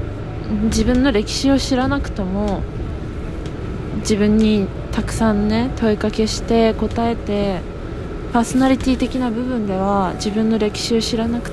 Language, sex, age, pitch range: Japanese, female, 20-39, 190-235 Hz